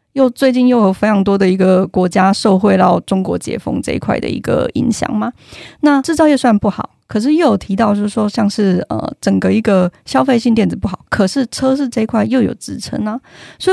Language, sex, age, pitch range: Chinese, female, 20-39, 190-235 Hz